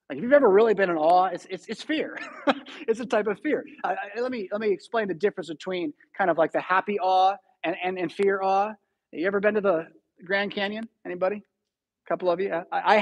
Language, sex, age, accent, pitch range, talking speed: English, male, 30-49, American, 180-245 Hz, 240 wpm